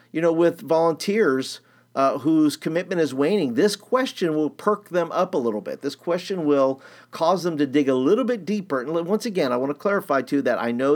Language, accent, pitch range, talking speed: English, American, 130-195 Hz, 220 wpm